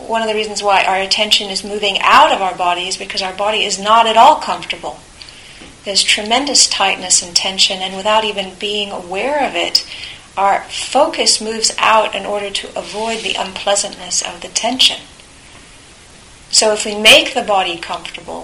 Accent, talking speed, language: American, 175 wpm, English